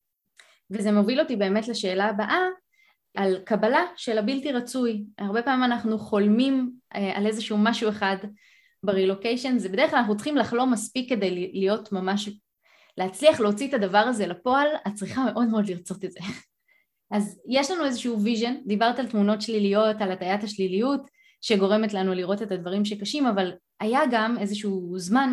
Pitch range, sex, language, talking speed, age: 195-250 Hz, female, Hebrew, 155 wpm, 20-39